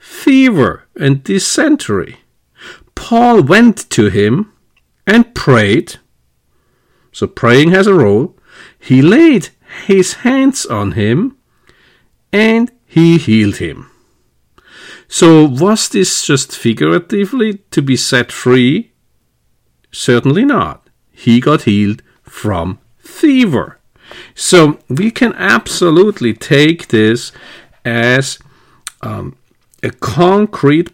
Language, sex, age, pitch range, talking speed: English, male, 50-69, 120-195 Hz, 95 wpm